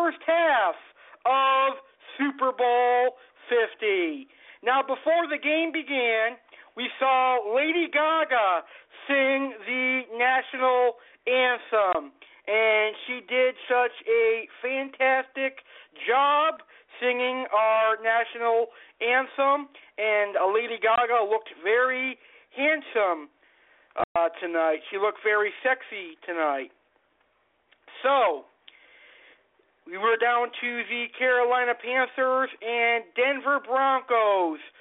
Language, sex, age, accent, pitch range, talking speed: English, male, 50-69, American, 220-270 Hz, 90 wpm